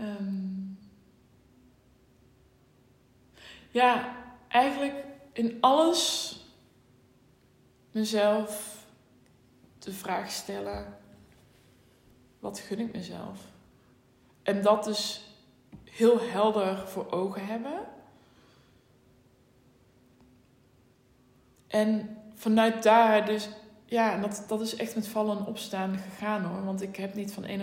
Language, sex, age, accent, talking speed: Dutch, female, 20-39, Dutch, 90 wpm